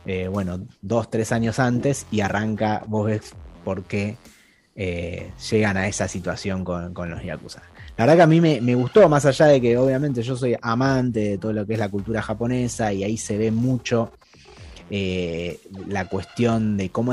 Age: 20-39